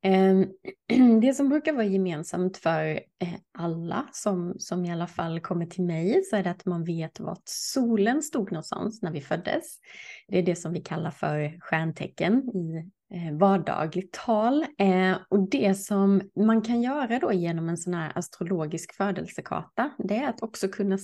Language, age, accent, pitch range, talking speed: Swedish, 20-39, native, 175-225 Hz, 165 wpm